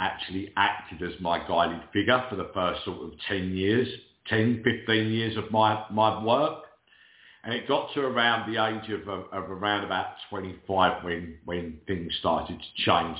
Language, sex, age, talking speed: English, male, 50-69, 175 wpm